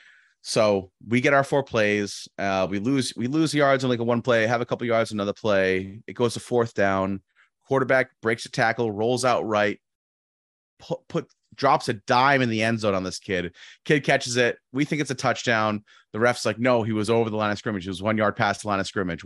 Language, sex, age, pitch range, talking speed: English, male, 30-49, 95-120 Hz, 235 wpm